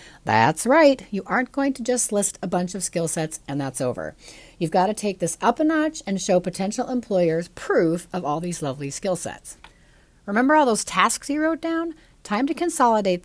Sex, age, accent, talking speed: female, 40-59, American, 205 wpm